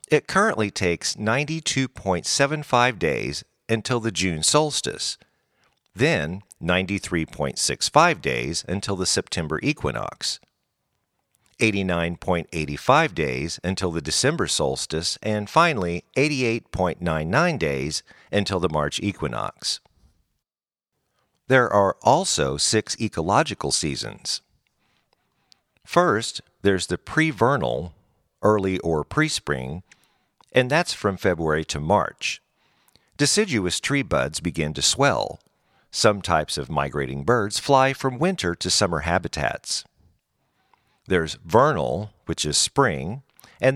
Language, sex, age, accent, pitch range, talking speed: English, male, 50-69, American, 85-115 Hz, 100 wpm